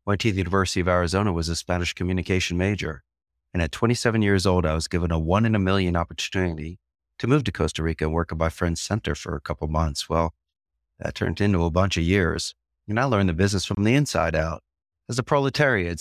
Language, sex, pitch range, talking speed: English, male, 80-100 Hz, 225 wpm